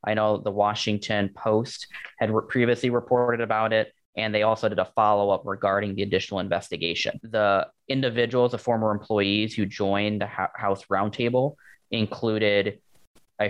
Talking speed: 150 wpm